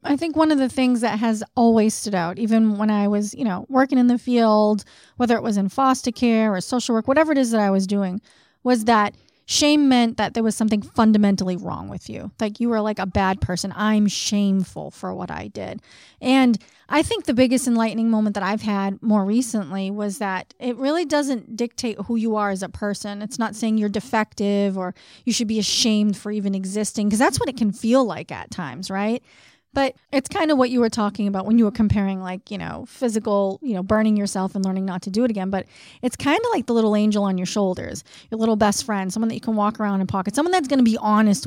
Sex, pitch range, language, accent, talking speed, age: female, 205-255 Hz, English, American, 240 wpm, 30-49